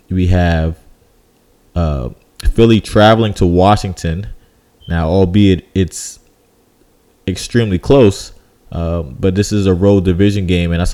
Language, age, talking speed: English, 20-39, 120 wpm